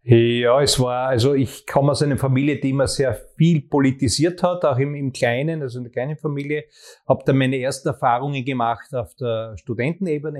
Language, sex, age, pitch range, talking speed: German, male, 30-49, 120-145 Hz, 190 wpm